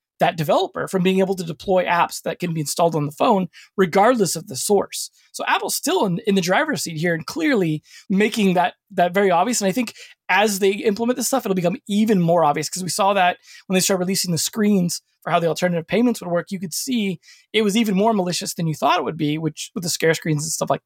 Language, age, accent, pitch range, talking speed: English, 20-39, American, 170-205 Hz, 250 wpm